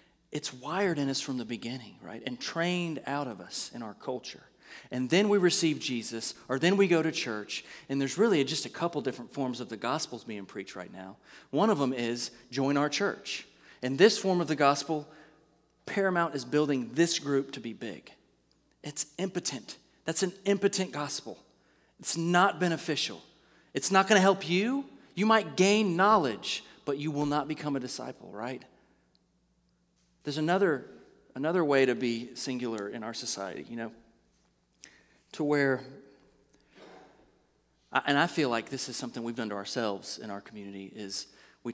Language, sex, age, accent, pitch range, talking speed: English, male, 30-49, American, 115-155 Hz, 175 wpm